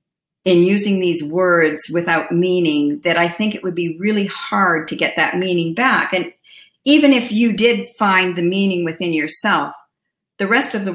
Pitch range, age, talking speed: 165-225 Hz, 50-69, 180 wpm